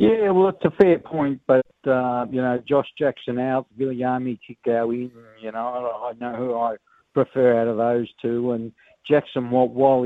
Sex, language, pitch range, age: male, English, 115-135 Hz, 60-79